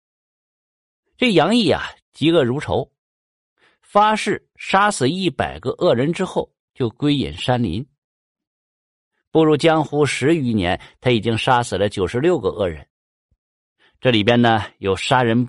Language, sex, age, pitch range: Chinese, male, 50-69, 110-155 Hz